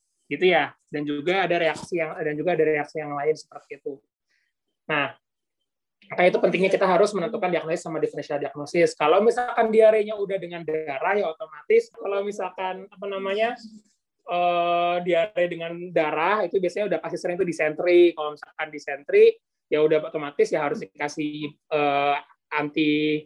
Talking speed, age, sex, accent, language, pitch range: 155 wpm, 20-39, male, native, Indonesian, 150-190 Hz